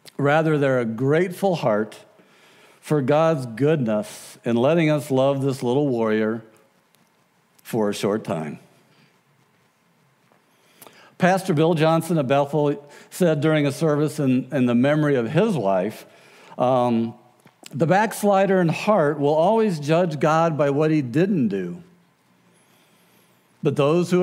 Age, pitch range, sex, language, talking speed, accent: 60-79, 125-170 Hz, male, English, 130 wpm, American